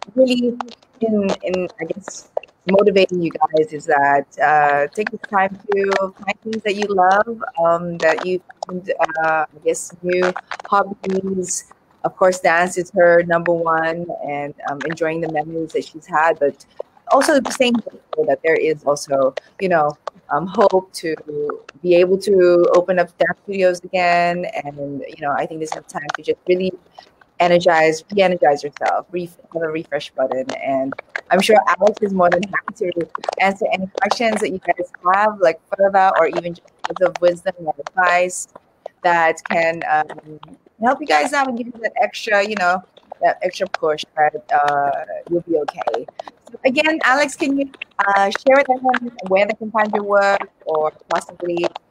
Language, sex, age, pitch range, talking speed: English, female, 30-49, 160-205 Hz, 170 wpm